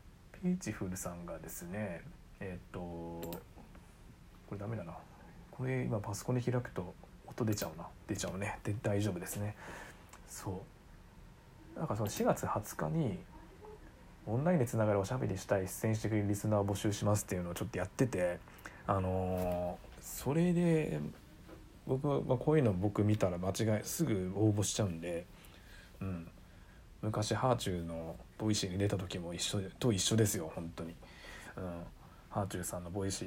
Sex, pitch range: male, 90-115 Hz